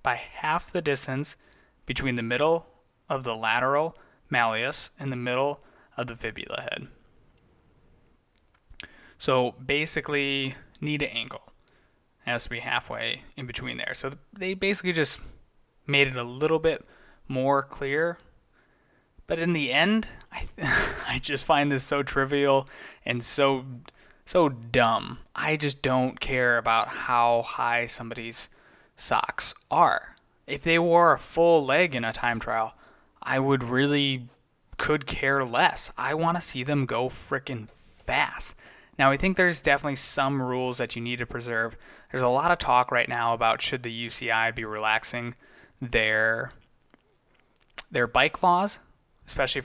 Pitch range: 120-145 Hz